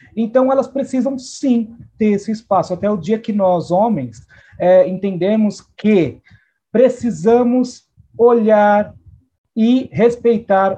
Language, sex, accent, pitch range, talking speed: Portuguese, male, Brazilian, 175-235 Hz, 110 wpm